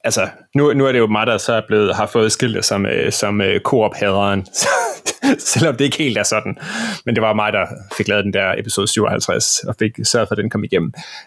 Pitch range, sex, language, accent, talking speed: 110-145 Hz, male, Danish, native, 235 wpm